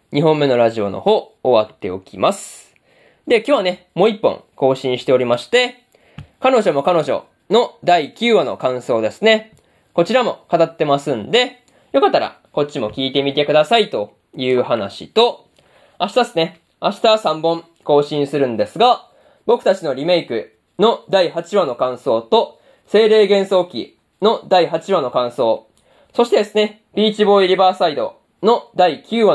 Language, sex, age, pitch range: Japanese, male, 20-39, 145-235 Hz